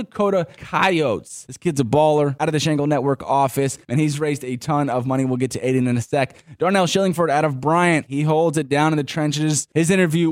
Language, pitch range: English, 130-170 Hz